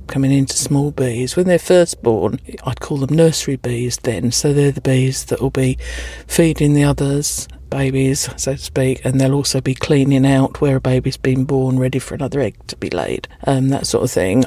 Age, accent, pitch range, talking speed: 50-69, British, 135-170 Hz, 215 wpm